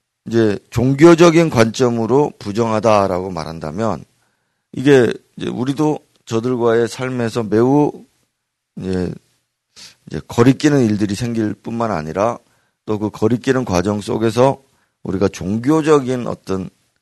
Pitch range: 95-130 Hz